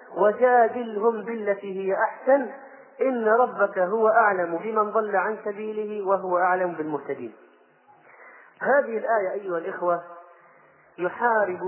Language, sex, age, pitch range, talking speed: Arabic, male, 30-49, 195-250 Hz, 105 wpm